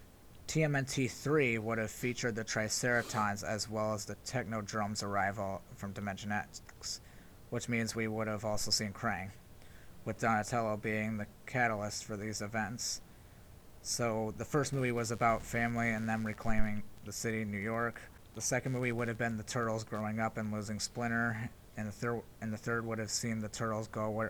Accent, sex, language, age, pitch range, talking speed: American, male, English, 30-49, 105-115 Hz, 185 wpm